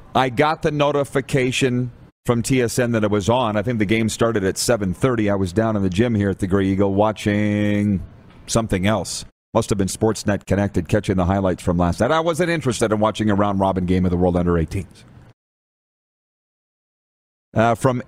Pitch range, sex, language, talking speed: 95-130 Hz, male, English, 195 wpm